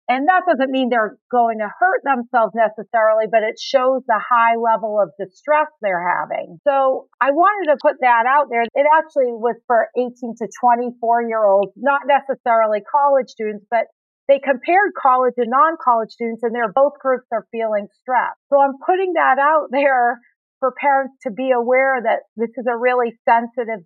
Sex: female